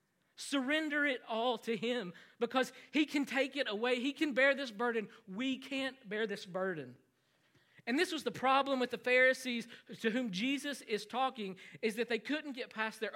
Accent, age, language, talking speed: American, 40-59, English, 185 wpm